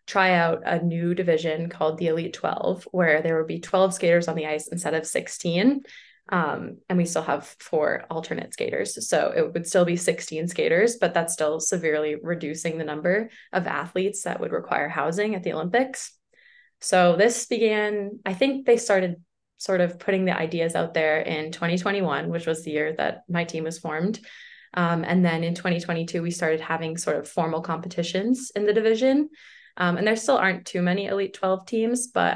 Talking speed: 190 wpm